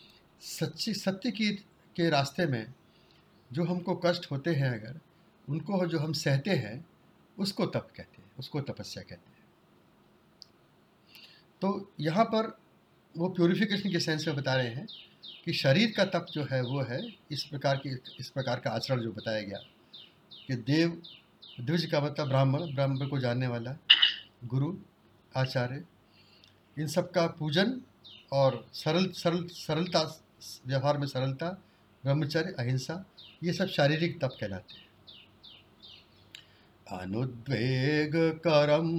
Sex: male